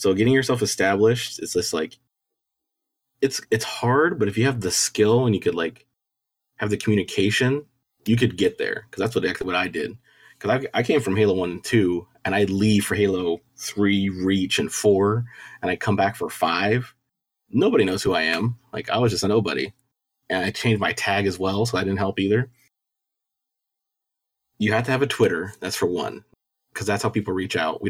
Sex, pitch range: male, 95-115 Hz